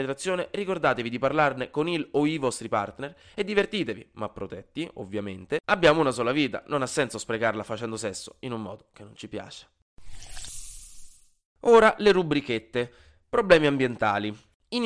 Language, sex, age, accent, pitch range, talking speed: Italian, male, 20-39, native, 125-170 Hz, 150 wpm